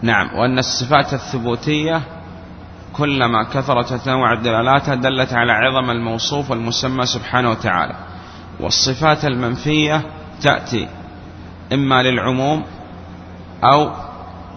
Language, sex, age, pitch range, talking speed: Arabic, male, 30-49, 90-130 Hz, 85 wpm